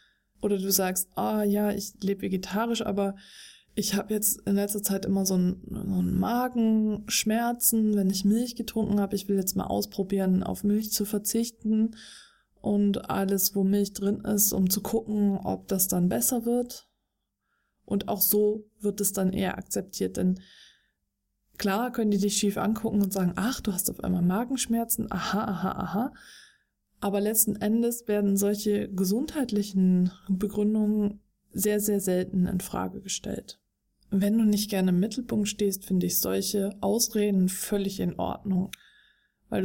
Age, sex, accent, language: 20-39, female, German, German